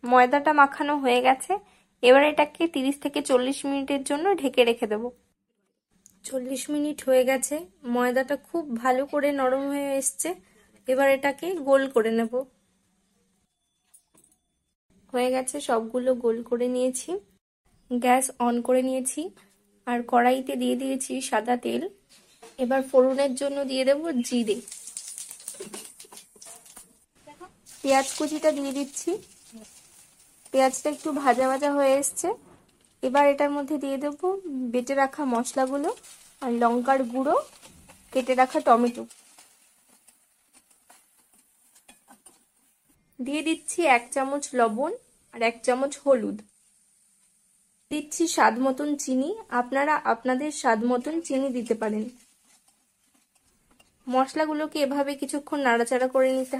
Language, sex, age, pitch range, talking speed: Bengali, female, 20-39, 245-290 Hz, 105 wpm